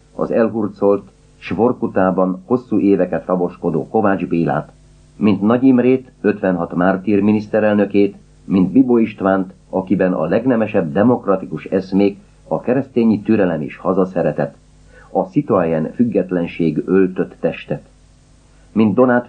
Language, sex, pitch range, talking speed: Hungarian, male, 90-110 Hz, 105 wpm